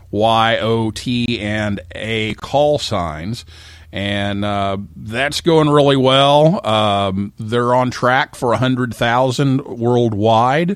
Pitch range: 110-145 Hz